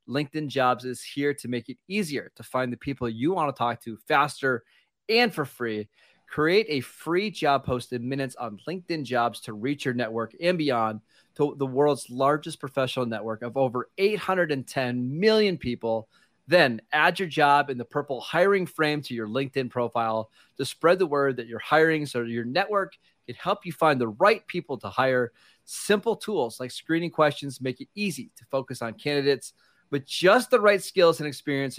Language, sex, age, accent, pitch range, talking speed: English, male, 30-49, American, 125-155 Hz, 185 wpm